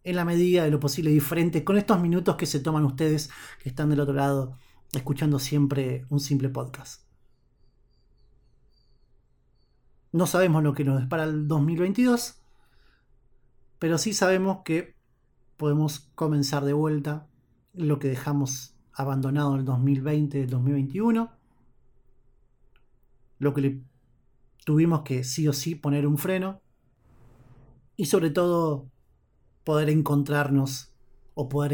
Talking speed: 125 wpm